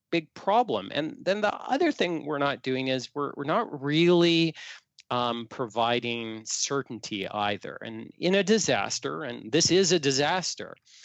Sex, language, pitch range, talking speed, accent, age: male, English, 115-155 Hz, 150 wpm, American, 40-59